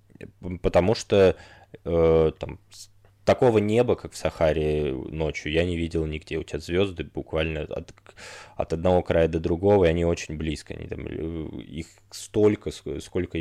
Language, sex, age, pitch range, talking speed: Russian, male, 20-39, 80-100 Hz, 150 wpm